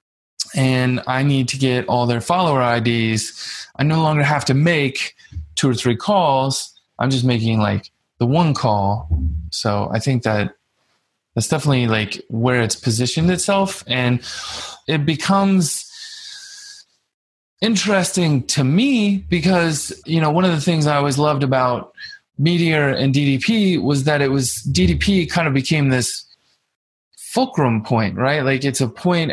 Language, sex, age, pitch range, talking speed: English, male, 20-39, 120-160 Hz, 150 wpm